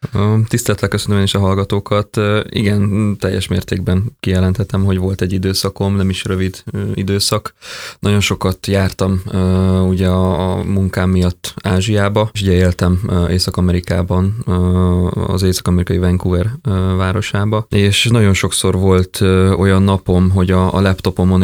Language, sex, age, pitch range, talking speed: Hungarian, male, 20-39, 90-100 Hz, 120 wpm